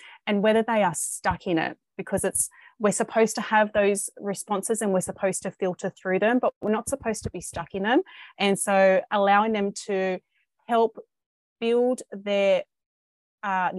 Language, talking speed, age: English, 175 wpm, 30-49